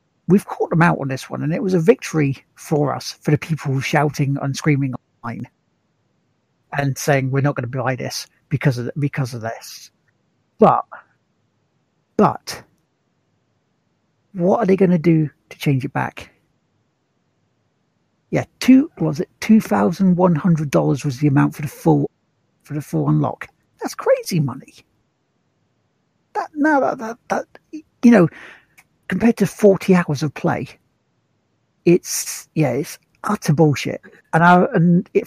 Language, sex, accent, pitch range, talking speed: English, male, British, 145-195 Hz, 155 wpm